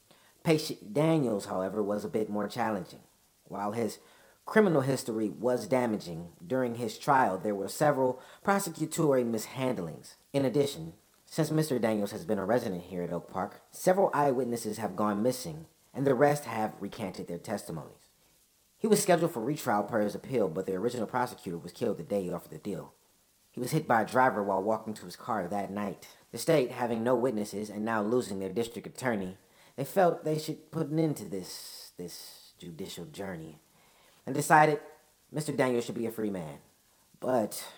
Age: 40-59